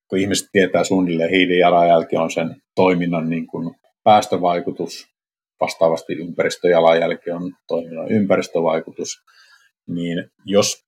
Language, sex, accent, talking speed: Finnish, male, native, 90 wpm